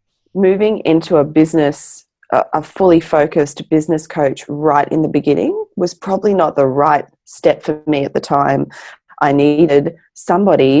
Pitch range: 140-170 Hz